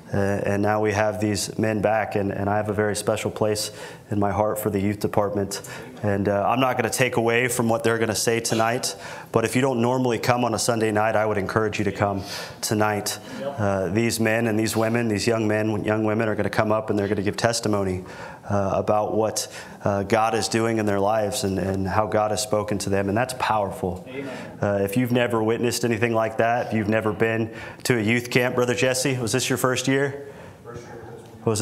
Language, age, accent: English, 30-49, American